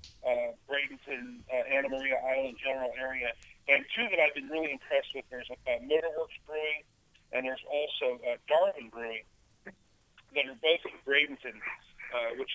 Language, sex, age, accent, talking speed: English, male, 50-69, American, 165 wpm